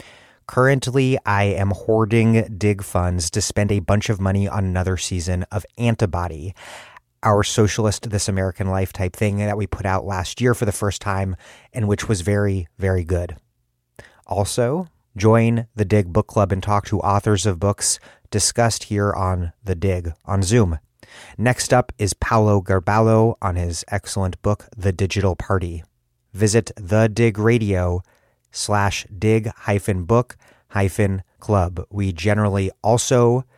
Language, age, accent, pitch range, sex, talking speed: English, 30-49, American, 95-115 Hz, male, 150 wpm